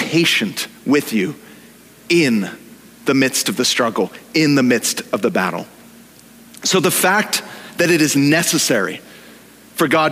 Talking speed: 140 wpm